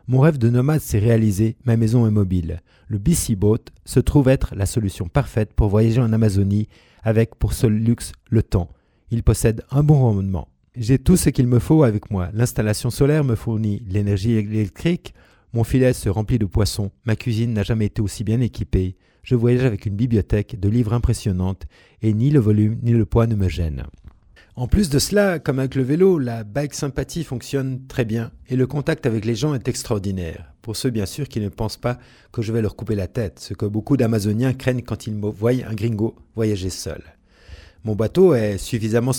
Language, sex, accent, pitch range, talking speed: French, male, French, 105-125 Hz, 205 wpm